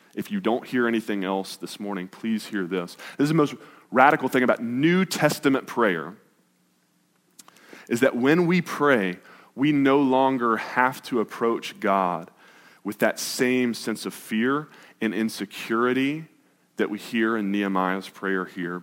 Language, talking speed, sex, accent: English, 155 wpm, male, American